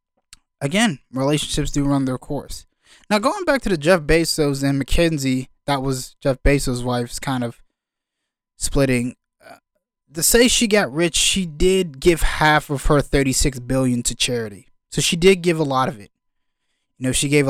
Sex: male